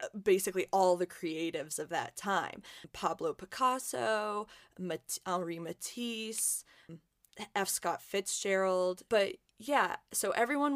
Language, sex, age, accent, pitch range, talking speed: English, female, 20-39, American, 170-220 Hz, 100 wpm